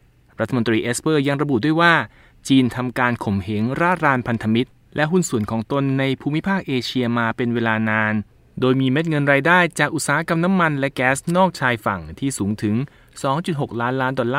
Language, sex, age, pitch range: Thai, male, 20-39, 115-150 Hz